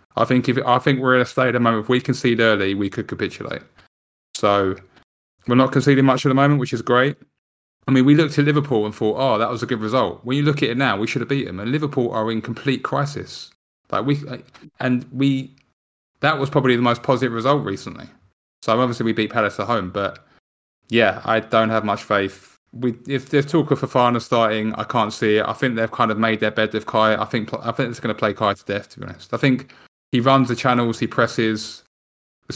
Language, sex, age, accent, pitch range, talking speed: English, male, 20-39, British, 105-130 Hz, 240 wpm